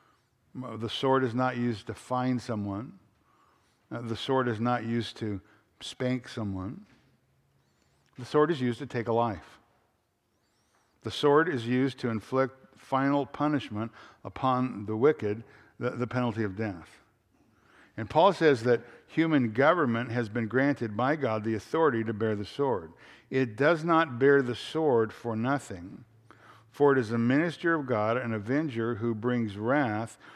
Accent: American